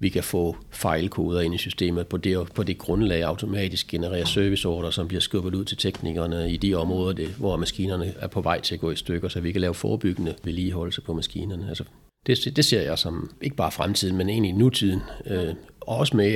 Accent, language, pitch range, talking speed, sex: native, Danish, 90-110 Hz, 215 wpm, male